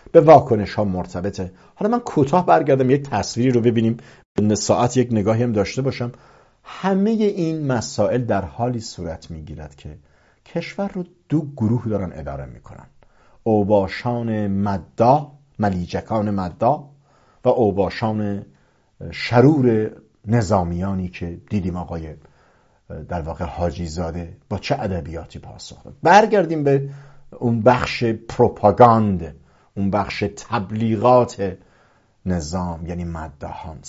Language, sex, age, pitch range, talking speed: English, male, 50-69, 95-125 Hz, 115 wpm